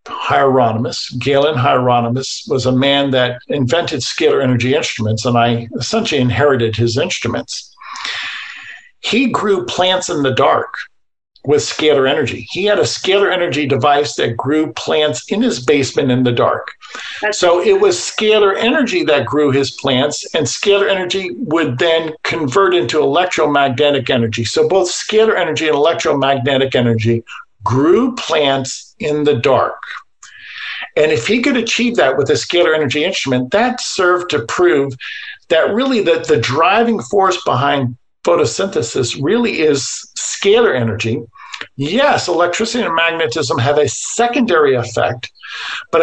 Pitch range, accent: 135-225 Hz, American